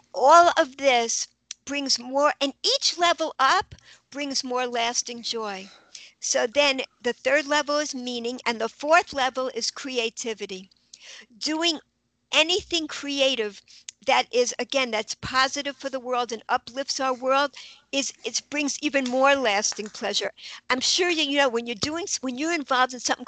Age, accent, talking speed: 60-79, American, 155 wpm